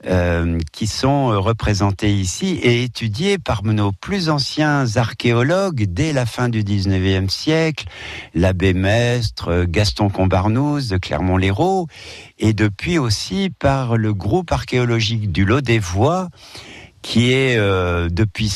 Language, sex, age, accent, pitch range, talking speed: French, male, 60-79, French, 90-125 Hz, 125 wpm